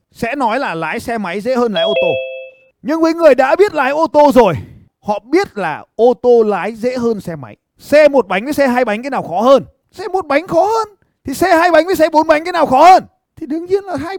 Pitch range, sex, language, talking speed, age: 225-310 Hz, male, Vietnamese, 265 wpm, 20-39